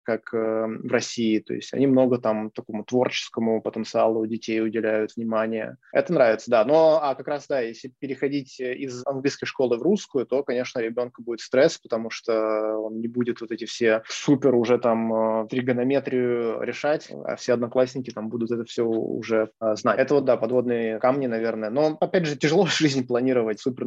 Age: 20-39